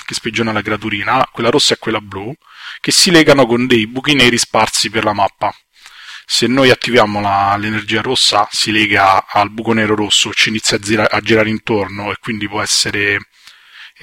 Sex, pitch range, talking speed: male, 105-125 Hz, 190 wpm